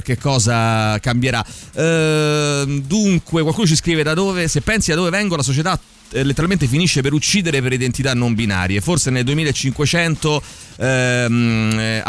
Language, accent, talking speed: Italian, native, 150 wpm